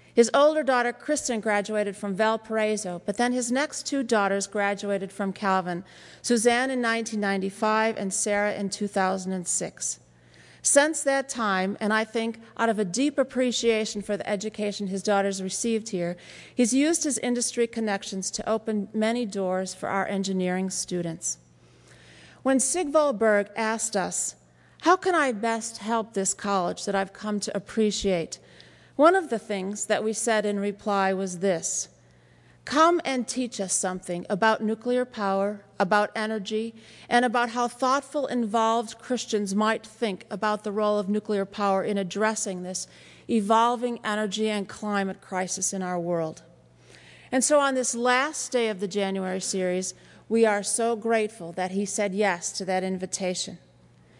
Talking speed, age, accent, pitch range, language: 155 wpm, 40-59, American, 190-230 Hz, English